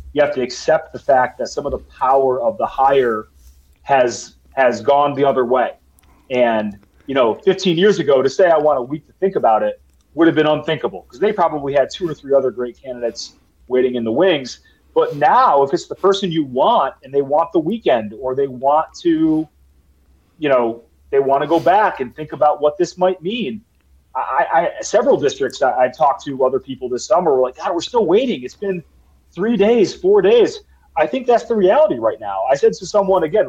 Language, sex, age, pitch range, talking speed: English, male, 30-49, 115-185 Hz, 215 wpm